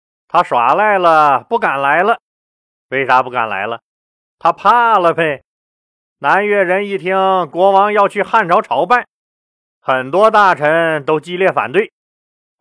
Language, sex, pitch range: Chinese, male, 140-200 Hz